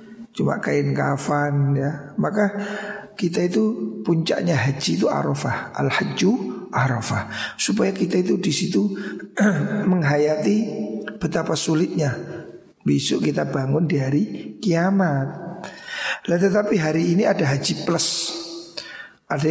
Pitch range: 145-185 Hz